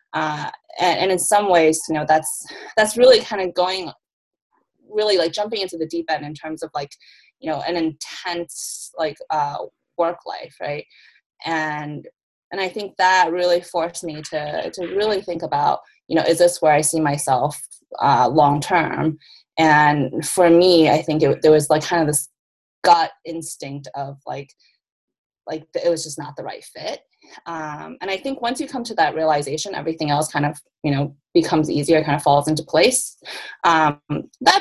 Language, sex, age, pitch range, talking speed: English, female, 20-39, 150-180 Hz, 185 wpm